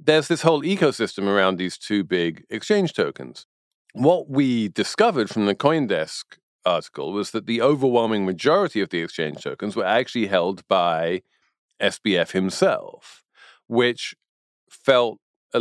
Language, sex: English, male